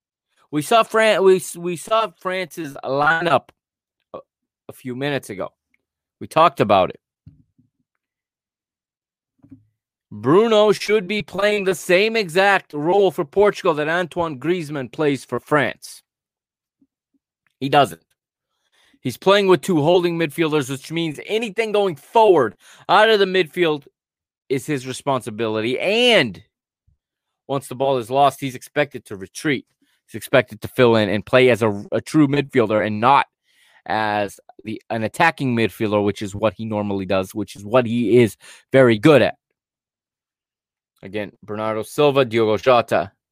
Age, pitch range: 30-49, 110-175 Hz